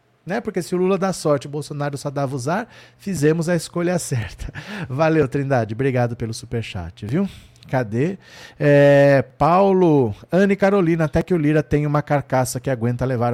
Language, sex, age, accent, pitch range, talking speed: Portuguese, male, 40-59, Brazilian, 120-170 Hz, 170 wpm